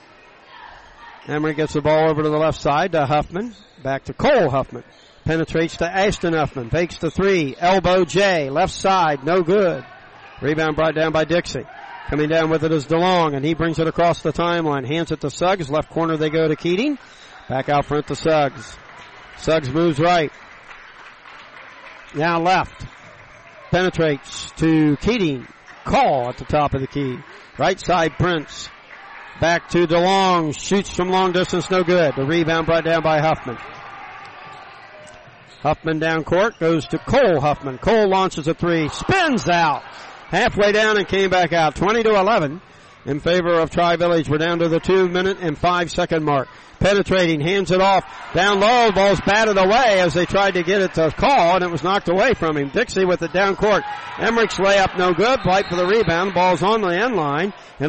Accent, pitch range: American, 155-190 Hz